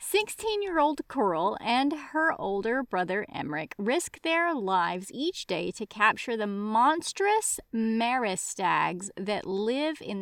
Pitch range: 200-295 Hz